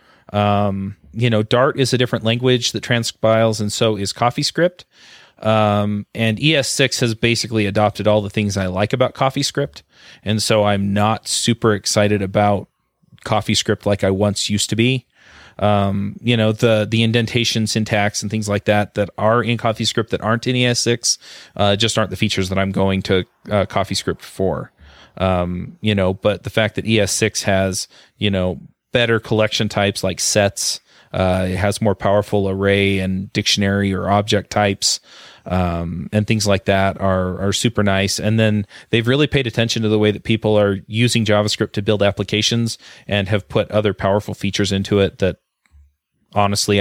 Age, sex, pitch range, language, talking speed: 30-49, male, 100-110 Hz, English, 175 wpm